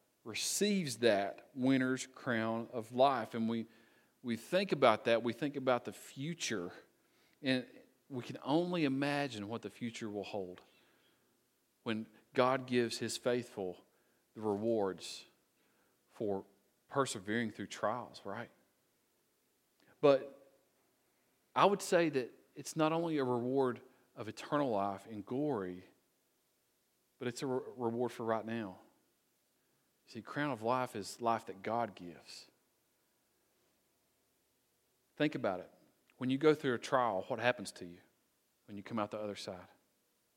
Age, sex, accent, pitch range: 40-59, male, American, 110-135 Hz